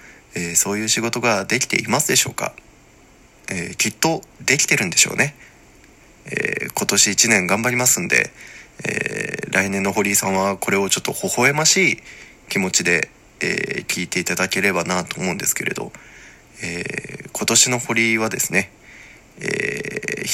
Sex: male